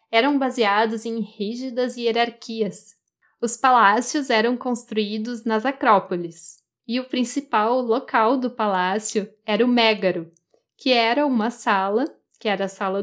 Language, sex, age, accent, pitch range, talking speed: Portuguese, female, 10-29, Brazilian, 210-250 Hz, 130 wpm